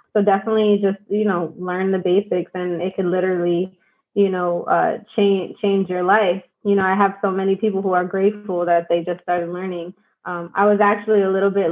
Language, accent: English, American